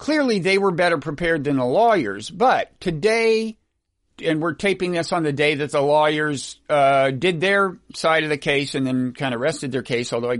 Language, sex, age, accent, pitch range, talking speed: English, male, 50-69, American, 145-200 Hz, 210 wpm